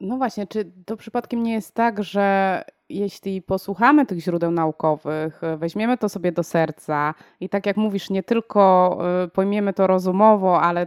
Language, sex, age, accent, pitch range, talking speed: Polish, female, 20-39, native, 175-210 Hz, 160 wpm